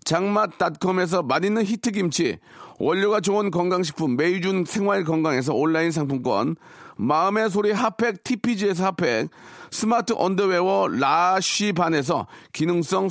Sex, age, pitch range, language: male, 40-59, 175-225 Hz, Korean